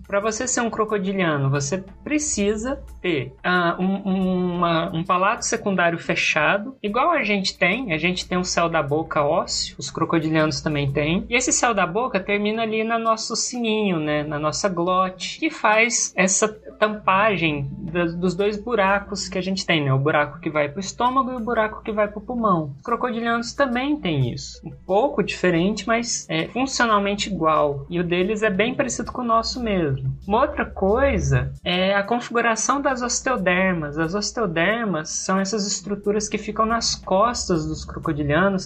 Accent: Brazilian